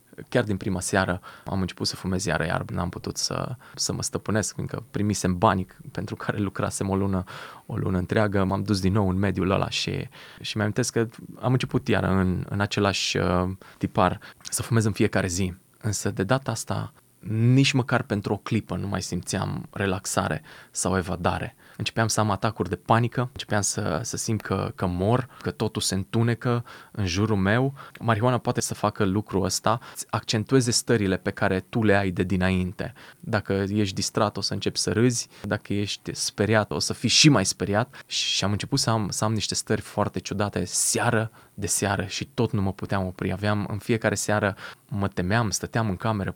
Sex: male